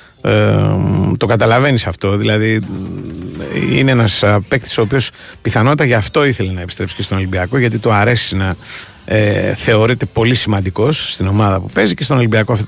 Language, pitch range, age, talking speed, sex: Greek, 100-125 Hz, 30-49, 165 wpm, male